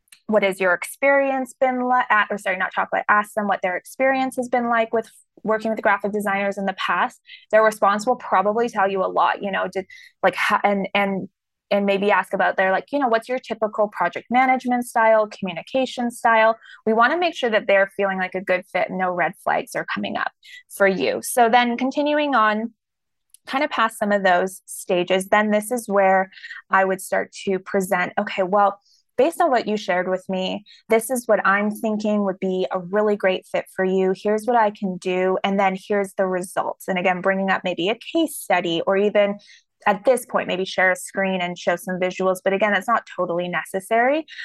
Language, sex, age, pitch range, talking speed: English, female, 20-39, 190-225 Hz, 215 wpm